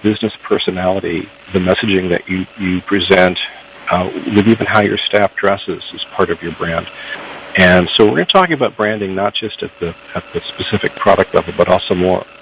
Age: 50-69